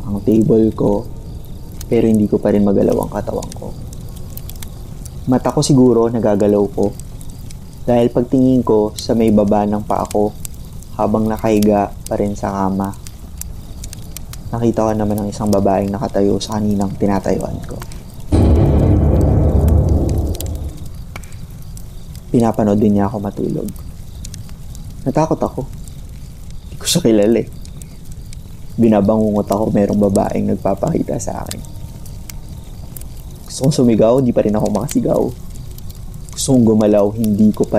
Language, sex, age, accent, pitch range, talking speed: Filipino, male, 20-39, native, 100-115 Hz, 110 wpm